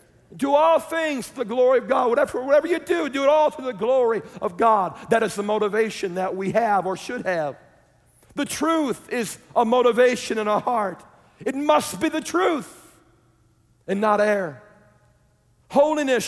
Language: English